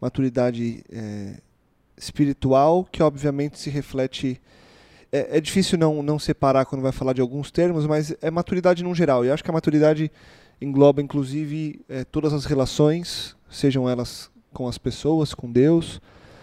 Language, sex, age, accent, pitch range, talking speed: Portuguese, male, 20-39, Brazilian, 130-155 Hz, 155 wpm